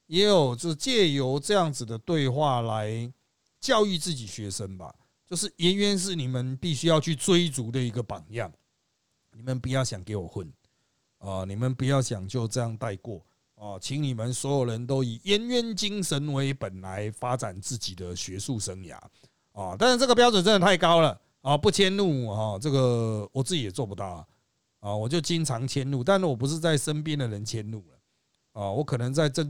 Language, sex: Chinese, male